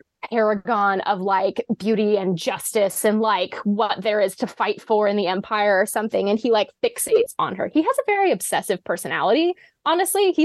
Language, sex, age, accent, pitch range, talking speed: English, female, 20-39, American, 200-240 Hz, 190 wpm